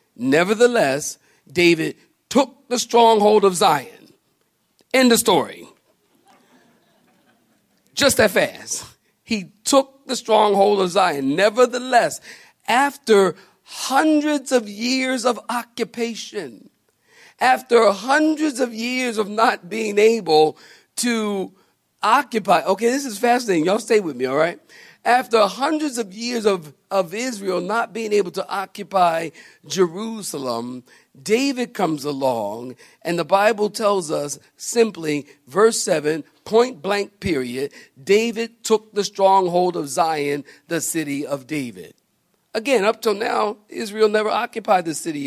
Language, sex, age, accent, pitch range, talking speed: English, male, 40-59, American, 160-230 Hz, 120 wpm